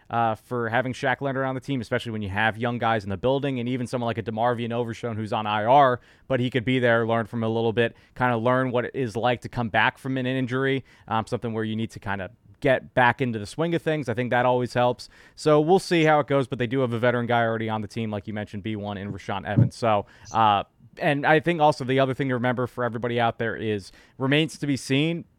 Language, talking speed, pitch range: English, 270 wpm, 115-140 Hz